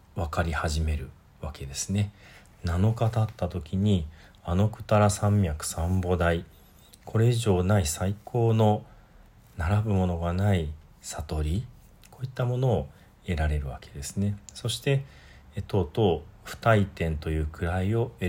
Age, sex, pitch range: 40-59, male, 80-105 Hz